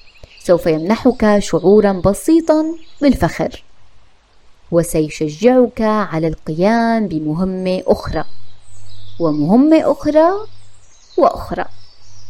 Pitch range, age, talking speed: 165-260 Hz, 20-39, 65 wpm